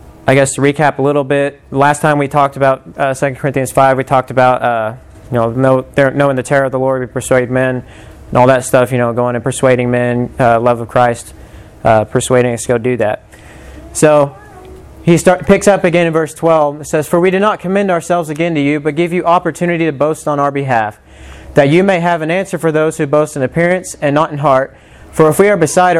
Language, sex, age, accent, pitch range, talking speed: English, male, 20-39, American, 125-155 Hz, 235 wpm